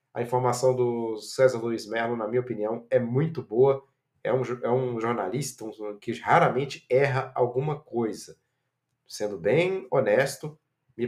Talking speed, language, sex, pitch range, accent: 135 wpm, Portuguese, male, 120-140 Hz, Brazilian